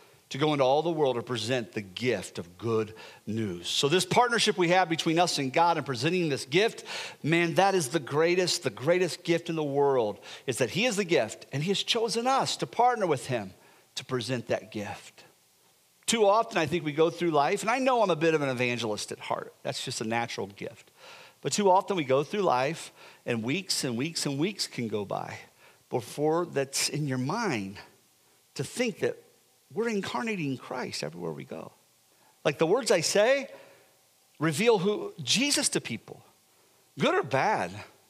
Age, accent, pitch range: 50-69, American, 135-205 Hz